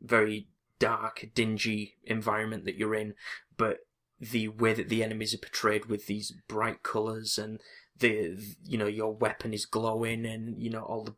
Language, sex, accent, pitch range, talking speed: English, male, British, 105-115 Hz, 170 wpm